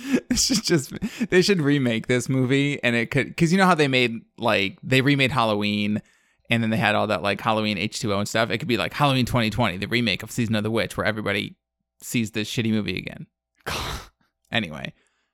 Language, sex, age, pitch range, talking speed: English, male, 20-39, 100-140 Hz, 205 wpm